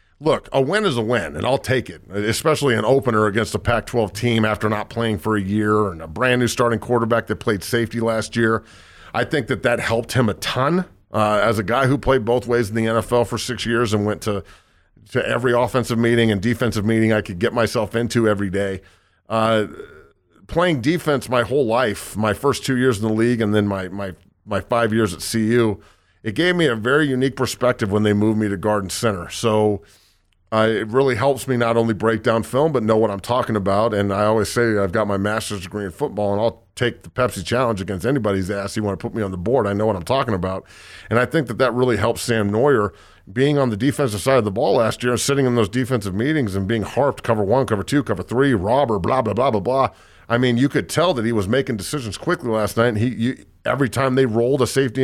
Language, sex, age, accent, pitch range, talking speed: English, male, 40-59, American, 105-125 Hz, 240 wpm